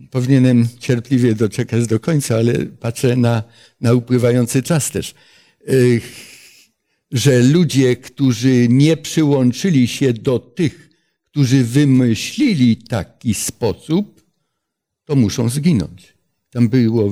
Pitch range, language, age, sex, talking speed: 125-155 Hz, Polish, 60-79, male, 100 wpm